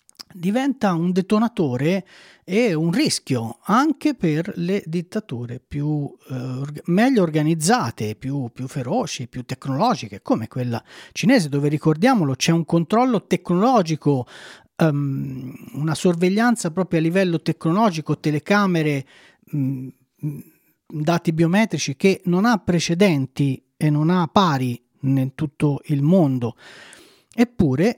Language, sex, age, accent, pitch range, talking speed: Italian, male, 40-59, native, 140-195 Hz, 110 wpm